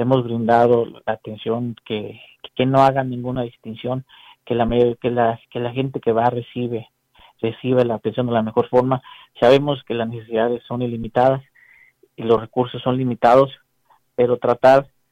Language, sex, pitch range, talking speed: Spanish, male, 120-140 Hz, 165 wpm